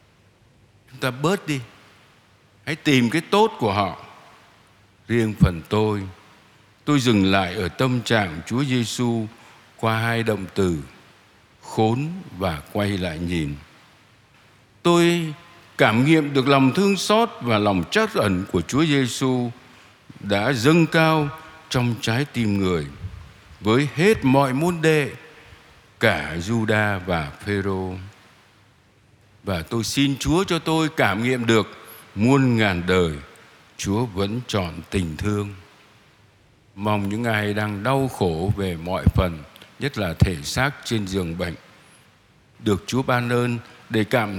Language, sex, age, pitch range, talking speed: Vietnamese, male, 60-79, 100-130 Hz, 135 wpm